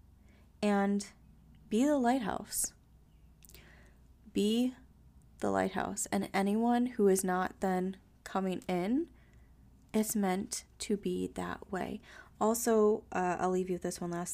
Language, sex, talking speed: English, female, 125 wpm